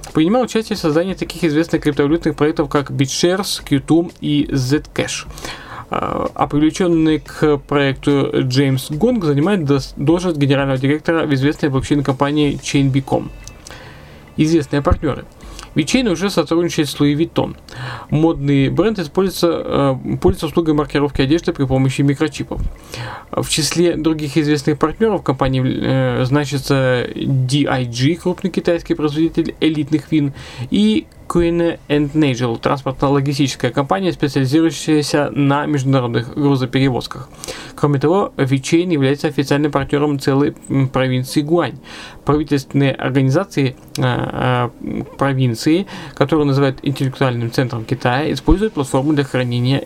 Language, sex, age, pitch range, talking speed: Russian, male, 20-39, 135-160 Hz, 110 wpm